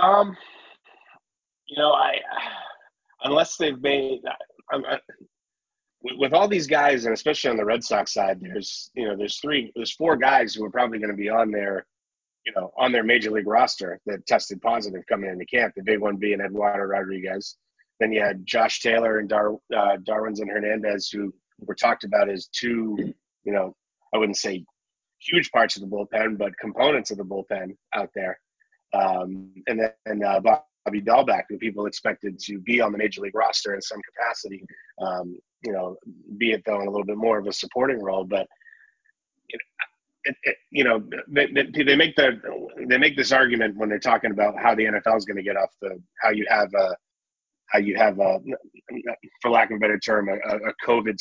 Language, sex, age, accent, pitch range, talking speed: English, male, 30-49, American, 100-120 Hz, 190 wpm